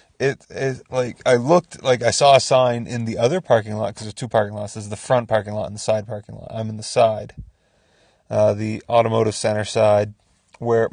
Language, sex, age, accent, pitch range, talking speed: English, male, 30-49, American, 105-125 Hz, 225 wpm